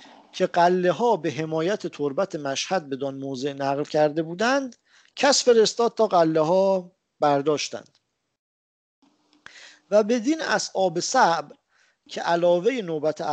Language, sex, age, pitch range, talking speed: English, male, 50-69, 150-215 Hz, 115 wpm